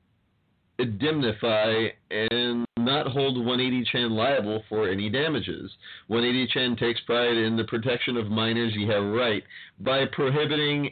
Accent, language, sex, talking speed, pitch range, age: American, English, male, 120 wpm, 115-150 Hz, 40-59